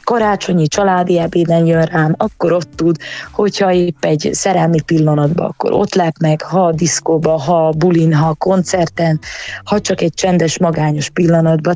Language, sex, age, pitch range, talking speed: Hungarian, female, 20-39, 155-185 Hz, 165 wpm